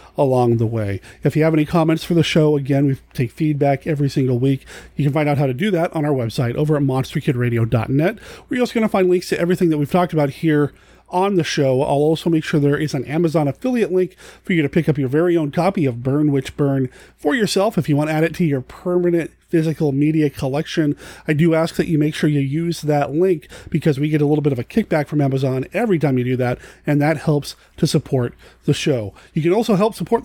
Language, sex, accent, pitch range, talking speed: English, male, American, 140-180 Hz, 245 wpm